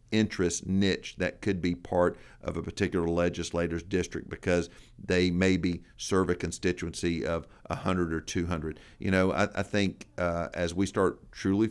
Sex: male